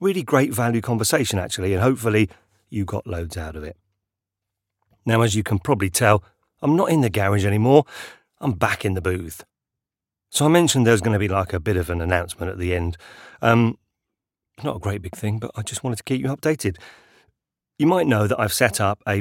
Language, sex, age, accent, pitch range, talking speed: English, male, 40-59, British, 90-120 Hz, 210 wpm